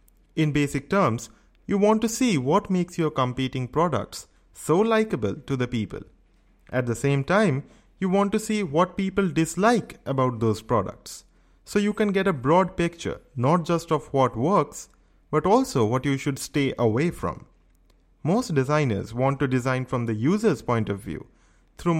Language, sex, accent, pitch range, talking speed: English, male, Indian, 120-170 Hz, 170 wpm